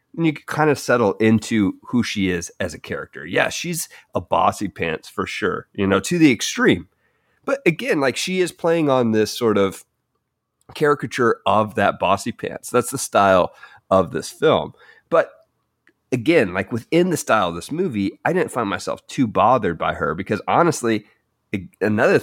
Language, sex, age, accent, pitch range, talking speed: English, male, 30-49, American, 100-140 Hz, 180 wpm